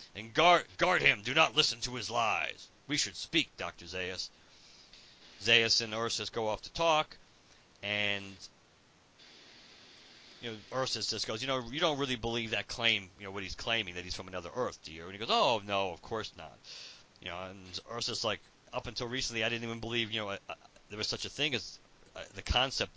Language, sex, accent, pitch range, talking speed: English, male, American, 95-115 Hz, 210 wpm